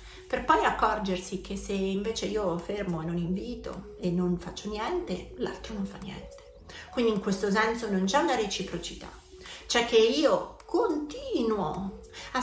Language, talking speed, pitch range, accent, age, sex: Italian, 155 wpm, 185-245 Hz, native, 30-49, female